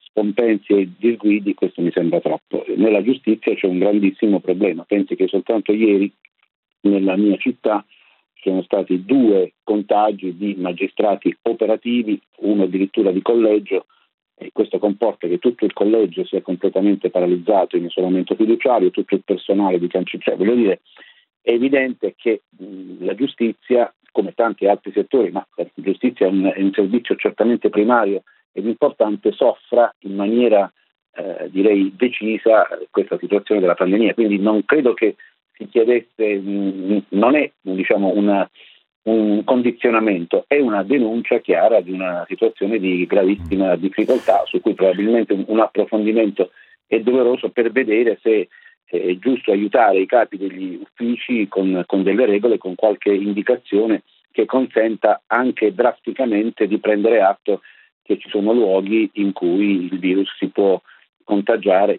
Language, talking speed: Italian, 145 wpm